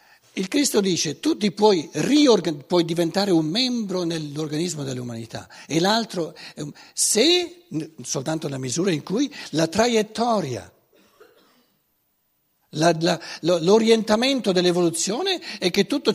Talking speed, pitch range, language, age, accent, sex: 100 wpm, 150-220 Hz, Italian, 60-79, native, male